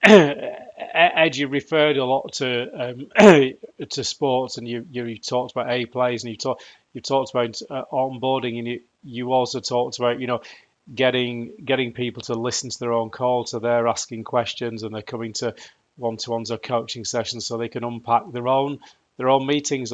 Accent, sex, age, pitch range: British, male, 30-49, 120-130 Hz